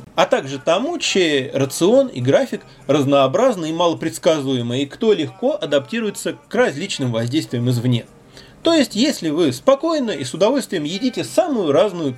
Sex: male